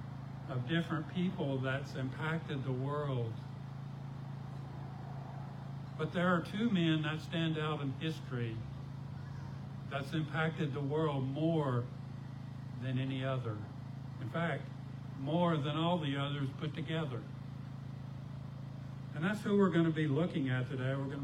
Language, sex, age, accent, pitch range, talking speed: English, male, 60-79, American, 130-155 Hz, 130 wpm